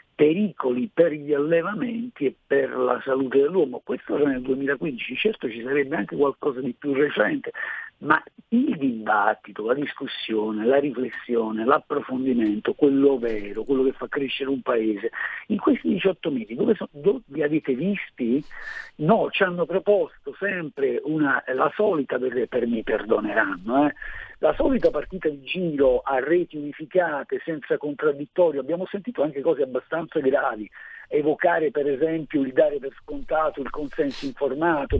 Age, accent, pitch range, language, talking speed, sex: 50-69, native, 130-215 Hz, Italian, 140 wpm, male